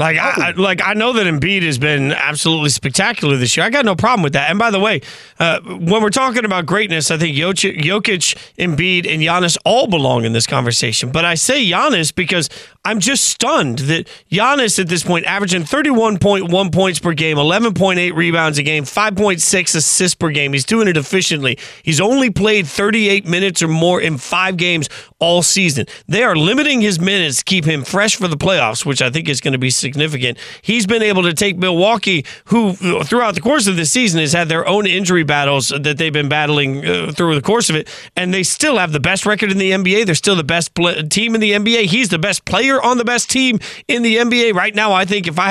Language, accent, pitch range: English, American, 160-210 Hz